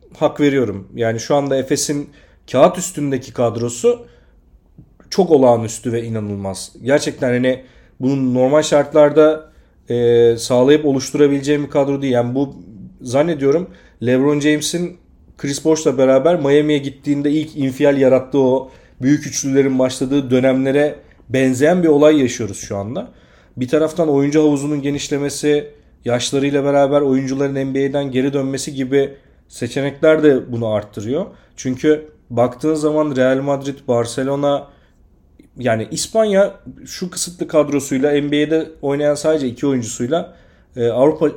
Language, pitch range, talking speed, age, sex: Turkish, 120-145 Hz, 115 wpm, 40-59, male